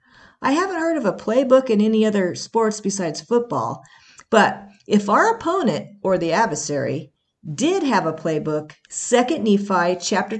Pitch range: 165-240 Hz